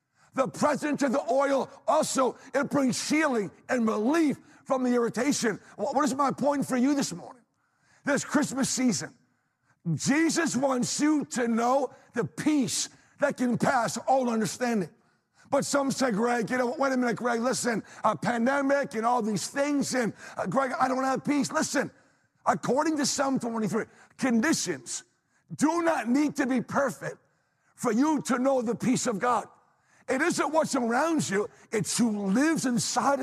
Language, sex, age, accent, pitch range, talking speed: English, male, 50-69, American, 225-275 Hz, 165 wpm